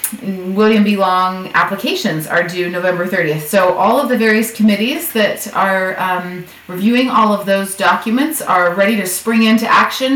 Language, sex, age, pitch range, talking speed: English, female, 30-49, 185-220 Hz, 165 wpm